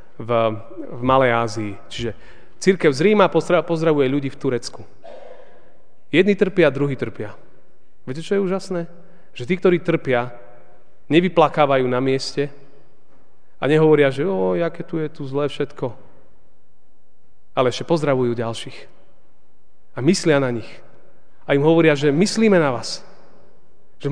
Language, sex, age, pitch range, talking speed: Slovak, male, 30-49, 130-185 Hz, 130 wpm